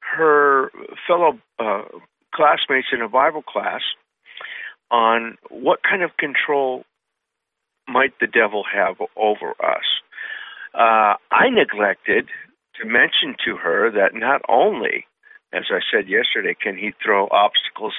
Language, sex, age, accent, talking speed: English, male, 50-69, American, 125 wpm